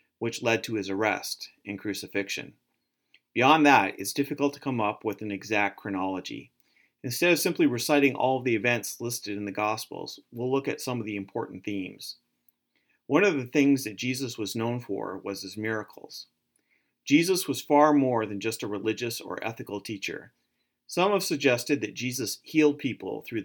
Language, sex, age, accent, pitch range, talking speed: English, male, 40-59, American, 100-130 Hz, 175 wpm